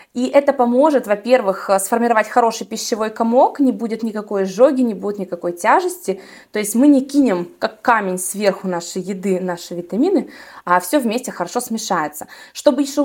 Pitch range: 185-245 Hz